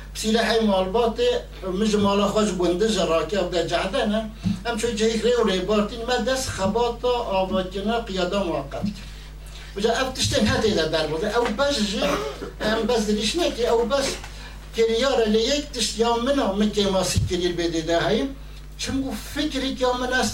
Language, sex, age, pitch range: Turkish, male, 60-79, 200-235 Hz